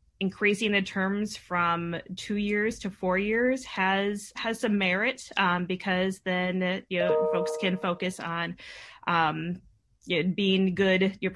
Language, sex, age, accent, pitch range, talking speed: English, female, 20-39, American, 165-195 Hz, 135 wpm